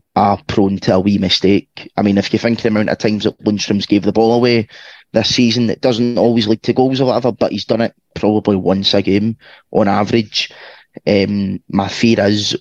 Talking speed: 220 wpm